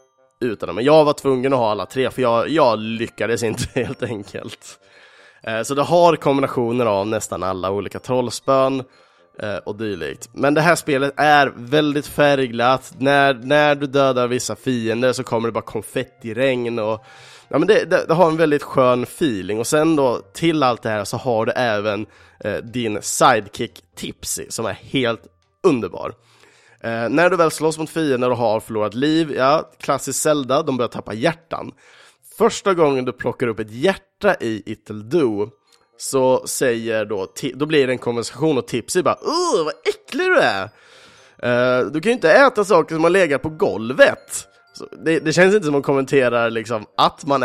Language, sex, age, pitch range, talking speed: Swedish, male, 20-39, 115-150 Hz, 180 wpm